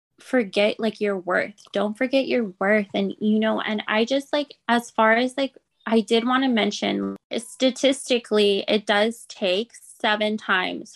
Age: 20-39